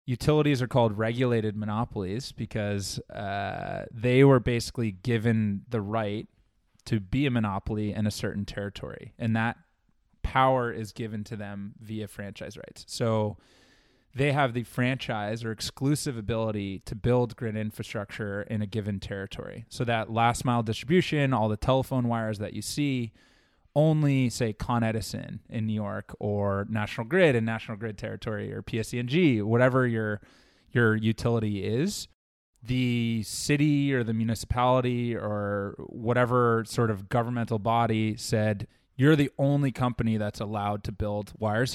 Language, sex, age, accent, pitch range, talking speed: English, male, 20-39, American, 110-125 Hz, 145 wpm